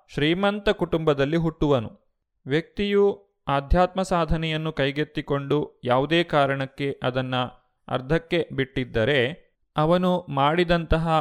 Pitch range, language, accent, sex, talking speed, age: 135-170 Hz, Kannada, native, male, 75 wpm, 30-49